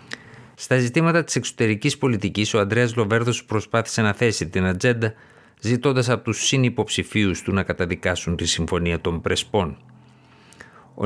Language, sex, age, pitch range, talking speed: Greek, male, 50-69, 95-120 Hz, 135 wpm